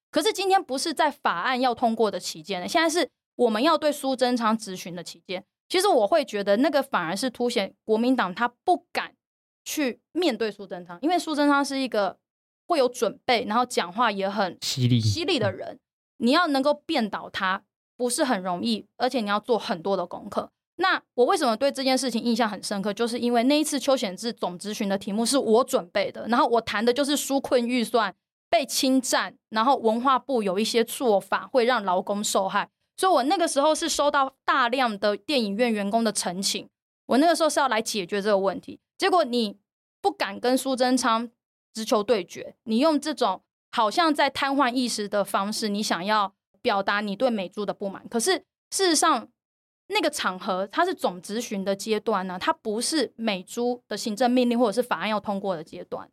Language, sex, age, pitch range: Chinese, female, 20-39, 210-280 Hz